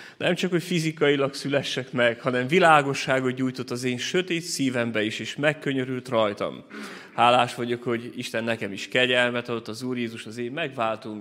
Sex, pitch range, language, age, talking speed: male, 115-135 Hz, Hungarian, 30-49, 165 wpm